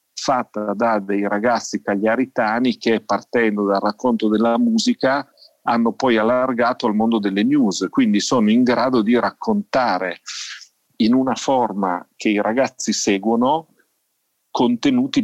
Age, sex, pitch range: 40-59, male, 105-135 Hz